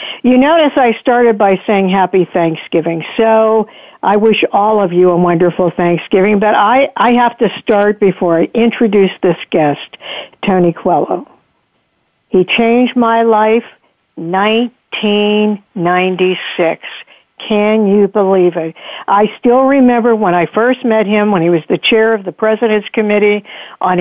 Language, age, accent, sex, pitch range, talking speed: English, 60-79, American, female, 180-225 Hz, 140 wpm